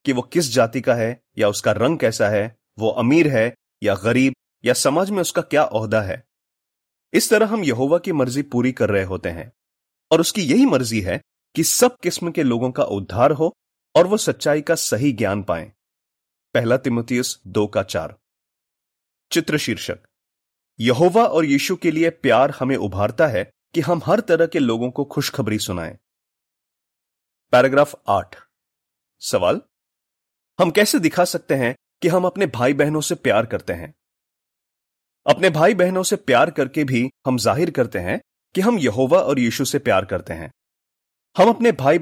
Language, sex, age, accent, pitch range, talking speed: Hindi, male, 30-49, native, 105-165 Hz, 170 wpm